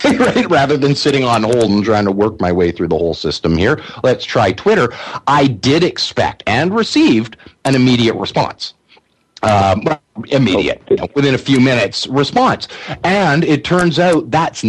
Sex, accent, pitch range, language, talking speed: male, American, 110-160 Hz, English, 160 wpm